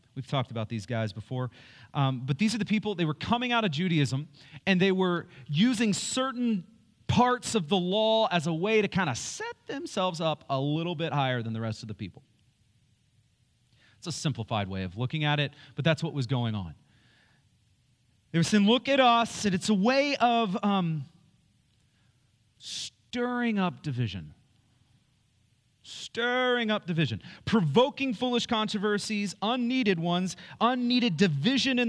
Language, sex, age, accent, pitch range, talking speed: English, male, 30-49, American, 125-200 Hz, 160 wpm